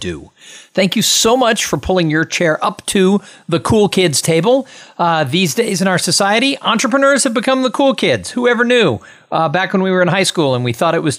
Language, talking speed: English, 225 wpm